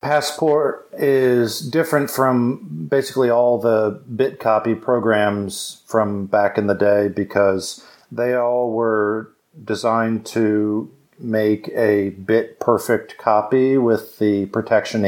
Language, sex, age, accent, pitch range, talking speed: English, male, 50-69, American, 100-115 Hz, 105 wpm